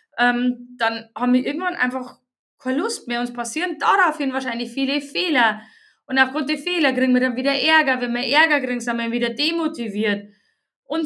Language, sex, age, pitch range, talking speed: German, female, 20-39, 235-295 Hz, 180 wpm